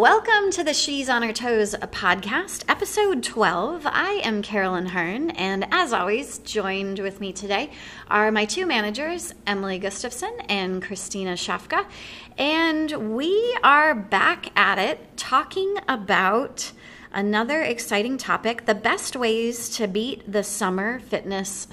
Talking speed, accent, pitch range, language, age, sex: 135 wpm, American, 205-290 Hz, English, 30-49, female